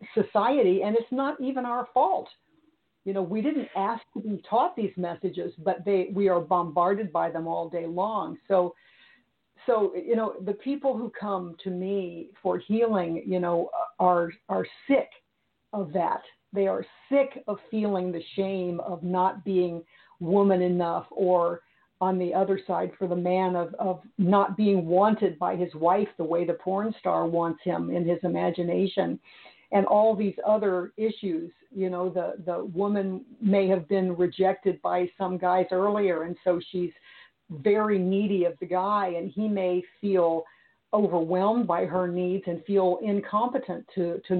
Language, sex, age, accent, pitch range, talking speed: English, female, 50-69, American, 180-205 Hz, 165 wpm